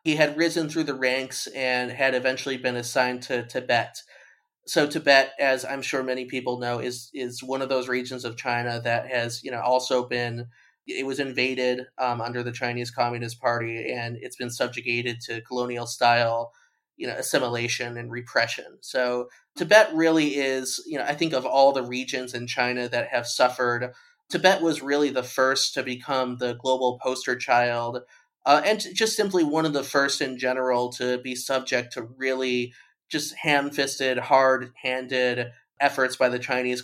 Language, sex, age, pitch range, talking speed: English, male, 30-49, 120-140 Hz, 175 wpm